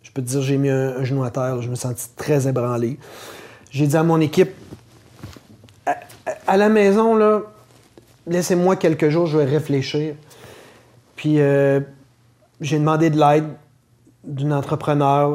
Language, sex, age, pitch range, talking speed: French, male, 30-49, 130-155 Hz, 170 wpm